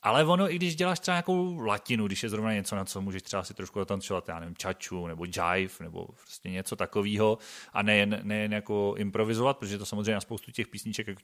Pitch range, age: 100-160 Hz, 30-49